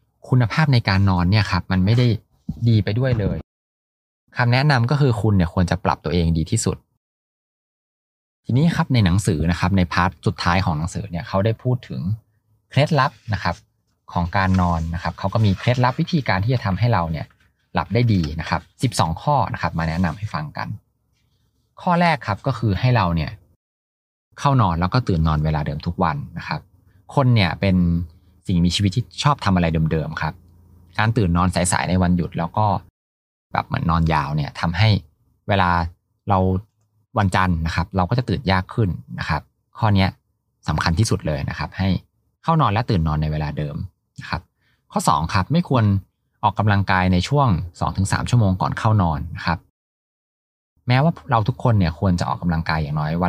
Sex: male